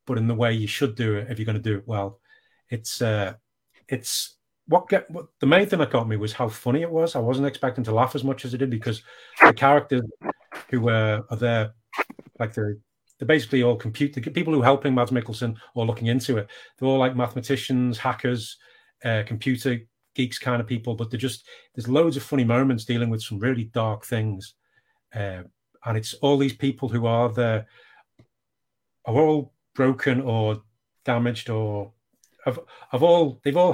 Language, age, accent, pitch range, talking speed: English, 40-59, British, 115-135 Hz, 195 wpm